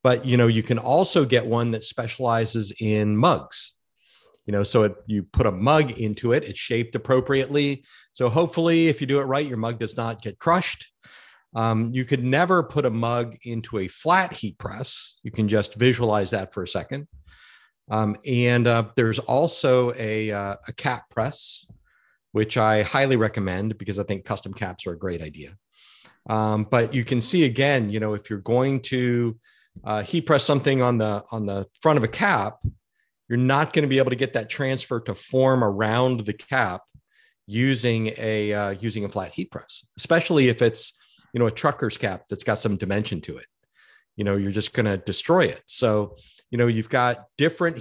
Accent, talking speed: American, 195 wpm